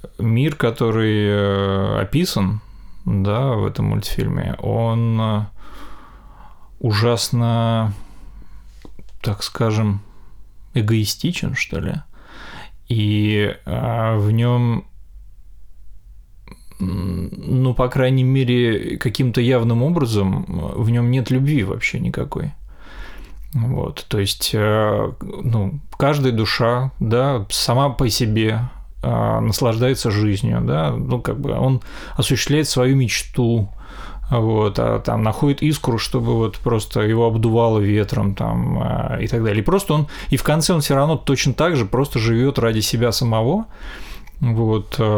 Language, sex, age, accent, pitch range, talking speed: Russian, male, 20-39, native, 105-130 Hz, 110 wpm